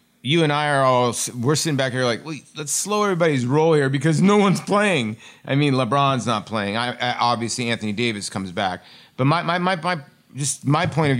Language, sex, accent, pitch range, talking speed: English, male, American, 115-150 Hz, 220 wpm